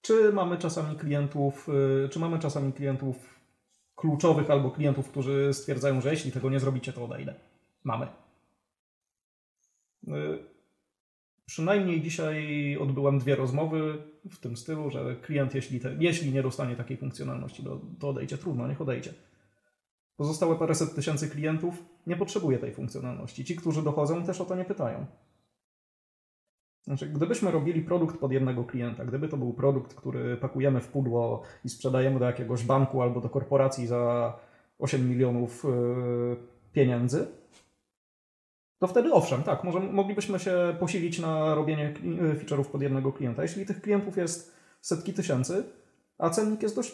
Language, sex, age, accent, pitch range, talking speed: Polish, male, 30-49, native, 130-170 Hz, 145 wpm